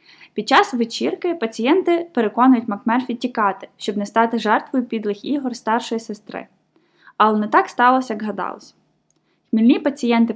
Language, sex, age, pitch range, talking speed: Ukrainian, female, 10-29, 210-255 Hz, 135 wpm